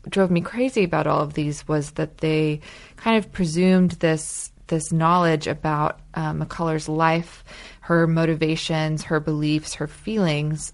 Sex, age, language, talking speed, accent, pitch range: female, 20-39, English, 140 wpm, American, 150-170 Hz